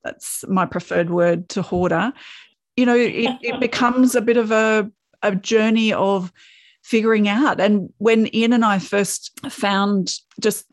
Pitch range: 195-235 Hz